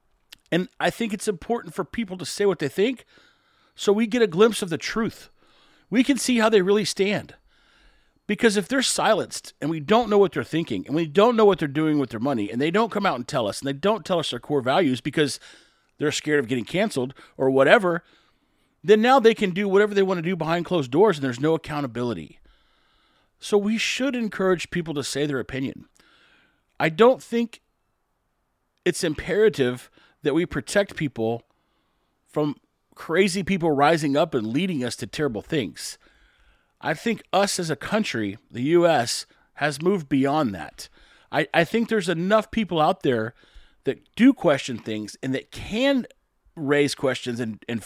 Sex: male